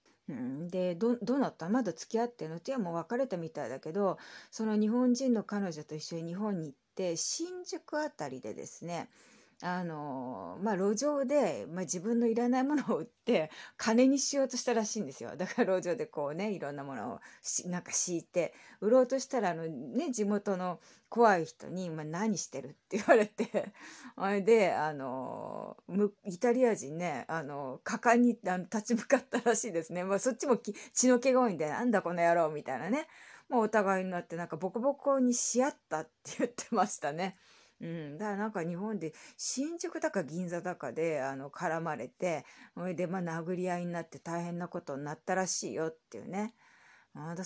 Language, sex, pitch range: Japanese, female, 170-240 Hz